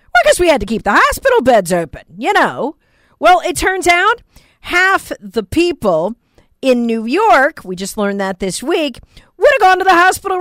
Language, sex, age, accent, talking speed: English, female, 40-59, American, 190 wpm